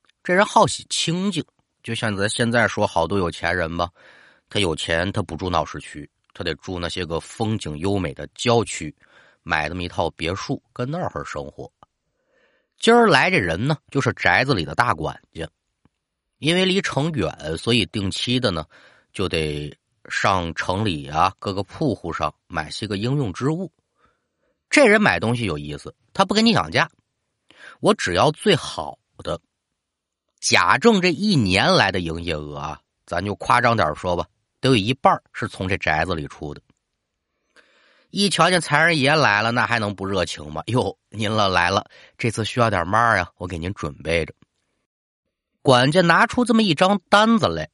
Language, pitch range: Chinese, 85-135 Hz